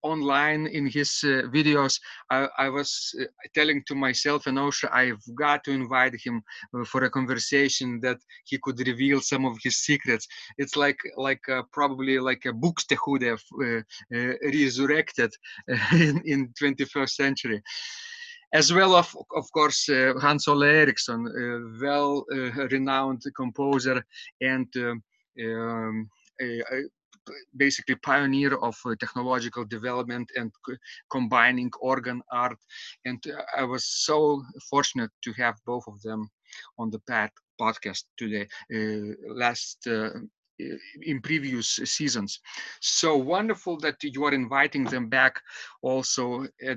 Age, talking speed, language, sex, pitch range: 30-49, 140 wpm, English, male, 125-150 Hz